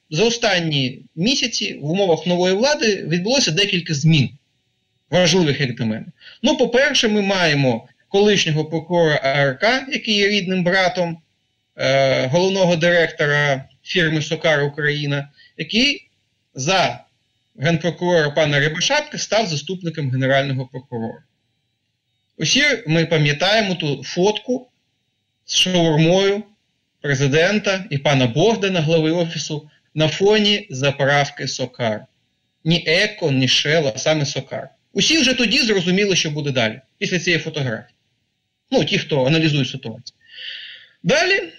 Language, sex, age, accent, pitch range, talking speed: Ukrainian, male, 30-49, native, 140-205 Hz, 115 wpm